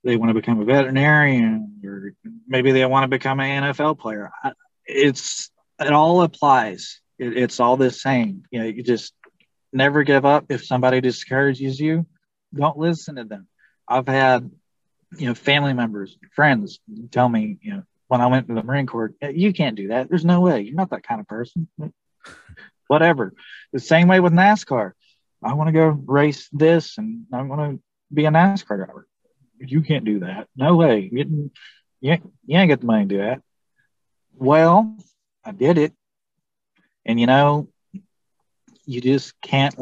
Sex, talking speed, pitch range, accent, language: male, 175 wpm, 120-155 Hz, American, English